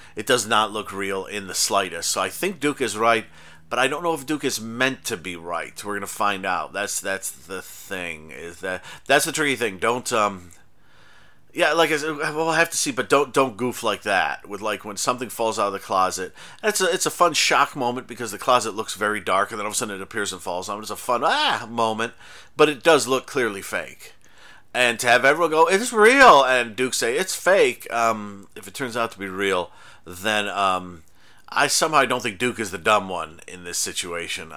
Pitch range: 100-140 Hz